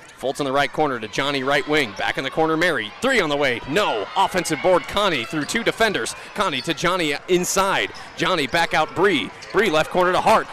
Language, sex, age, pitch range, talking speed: English, male, 30-49, 165-210 Hz, 215 wpm